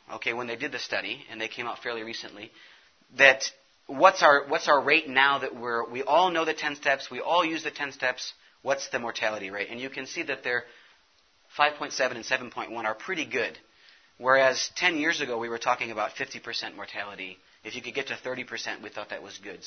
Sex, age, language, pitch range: male, 30-49, English, 120-165 Hz